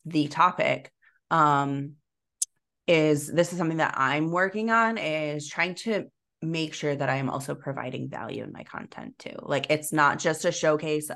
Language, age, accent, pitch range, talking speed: English, 20-39, American, 140-170 Hz, 170 wpm